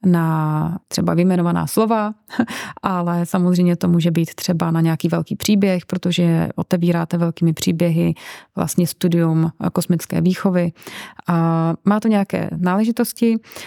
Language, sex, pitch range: Czech, female, 175-195 Hz